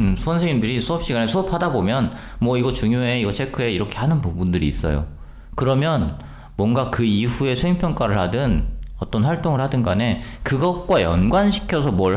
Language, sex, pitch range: Korean, male, 100-150 Hz